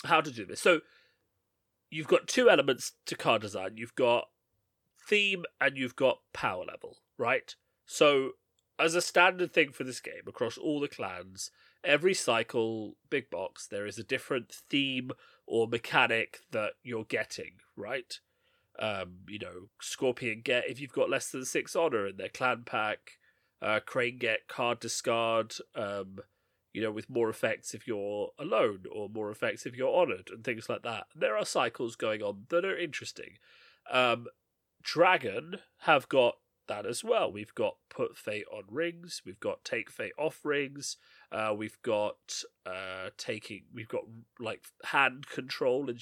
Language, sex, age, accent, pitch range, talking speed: English, male, 30-49, British, 105-170 Hz, 165 wpm